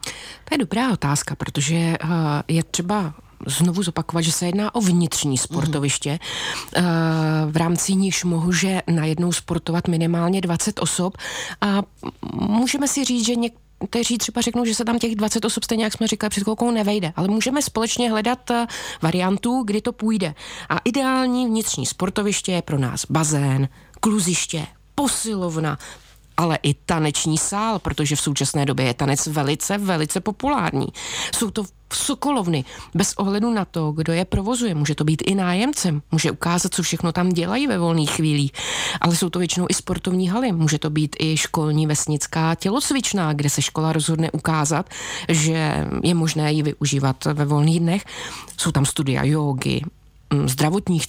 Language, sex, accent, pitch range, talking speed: Czech, female, native, 150-210 Hz, 155 wpm